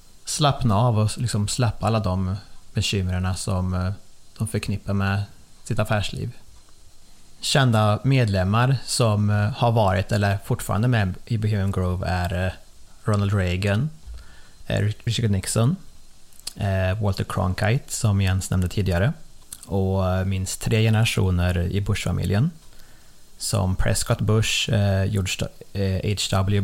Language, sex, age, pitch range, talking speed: Swedish, male, 30-49, 95-110 Hz, 100 wpm